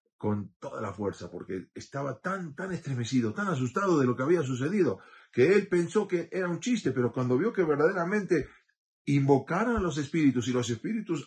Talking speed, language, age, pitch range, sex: 185 wpm, Spanish, 40-59, 100-160 Hz, male